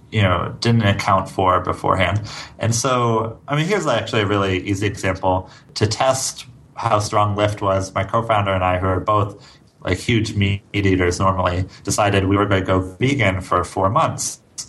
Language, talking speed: English, 180 wpm